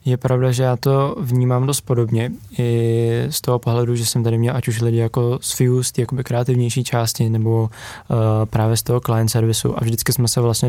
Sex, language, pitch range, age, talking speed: male, Czech, 110-125 Hz, 20-39, 215 wpm